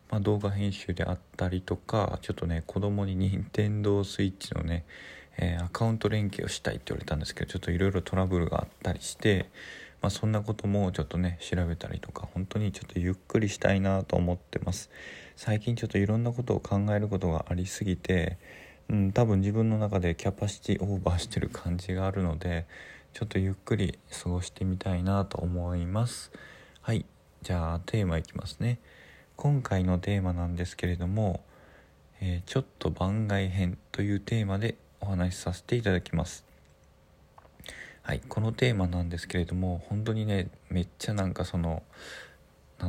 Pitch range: 85-100 Hz